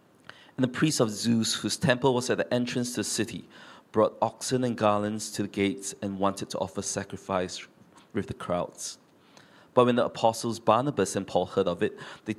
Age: 20-39